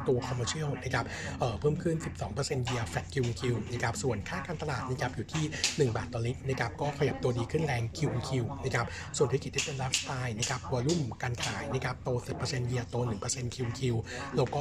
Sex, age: male, 60-79